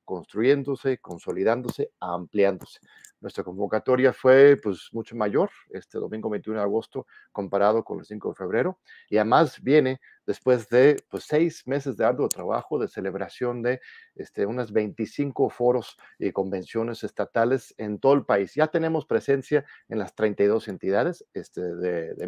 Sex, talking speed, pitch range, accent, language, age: male, 150 wpm, 110-150 Hz, Mexican, Spanish, 50-69